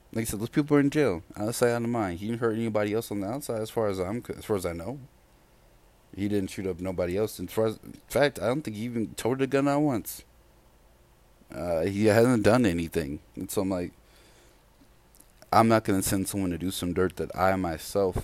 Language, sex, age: English, male, 30-49